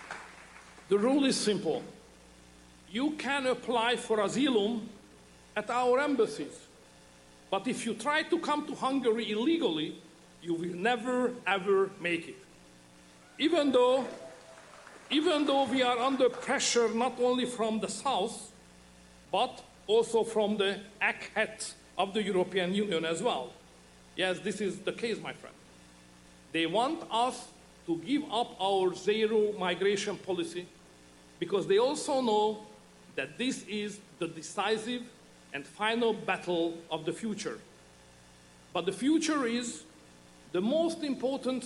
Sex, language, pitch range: male, Swedish, 160-240 Hz